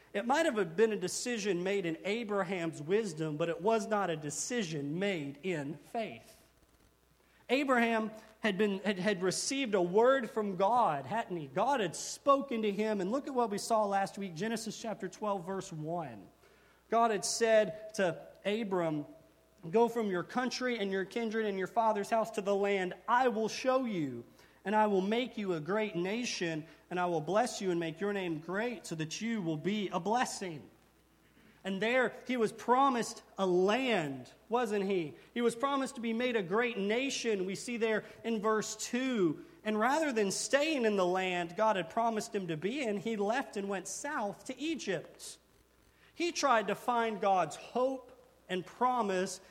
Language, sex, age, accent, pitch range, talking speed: English, male, 40-59, American, 185-230 Hz, 180 wpm